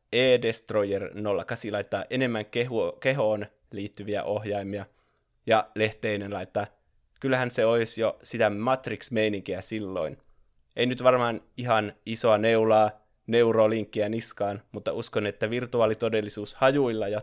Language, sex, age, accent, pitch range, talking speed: Finnish, male, 20-39, native, 105-120 Hz, 110 wpm